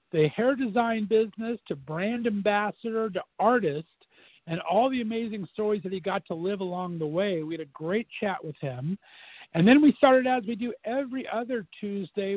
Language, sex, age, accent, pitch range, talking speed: English, male, 50-69, American, 170-220 Hz, 190 wpm